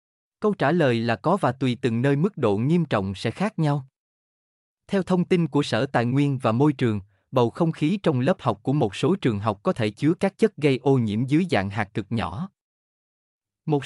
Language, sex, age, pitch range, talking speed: Vietnamese, male, 20-39, 115-165 Hz, 220 wpm